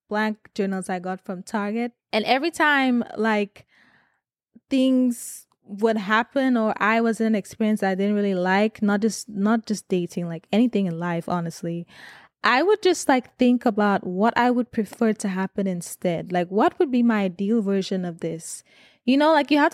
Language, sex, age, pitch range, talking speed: English, female, 20-39, 190-235 Hz, 180 wpm